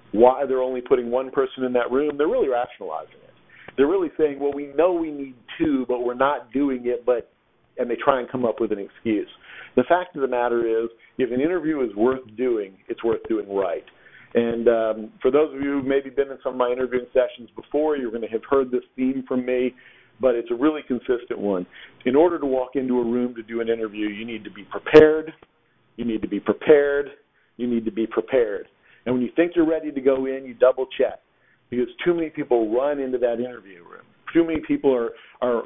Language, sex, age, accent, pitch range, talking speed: English, male, 50-69, American, 120-145 Hz, 225 wpm